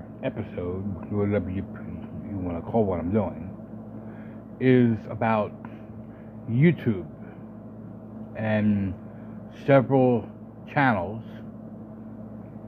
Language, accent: English, American